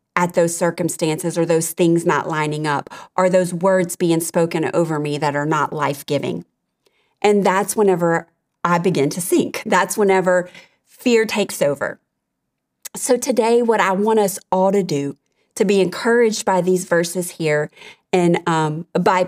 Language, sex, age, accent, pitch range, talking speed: English, female, 30-49, American, 170-210 Hz, 160 wpm